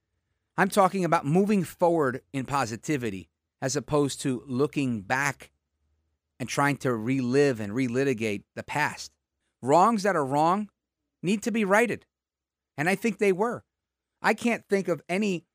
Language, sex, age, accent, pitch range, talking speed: English, male, 40-59, American, 120-200 Hz, 145 wpm